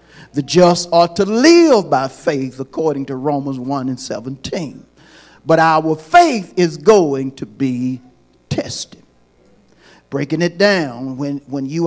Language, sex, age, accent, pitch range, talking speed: English, male, 50-69, American, 135-210 Hz, 135 wpm